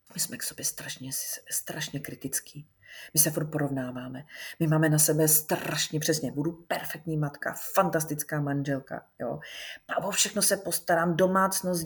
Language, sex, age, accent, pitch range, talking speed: Czech, female, 30-49, native, 140-170 Hz, 135 wpm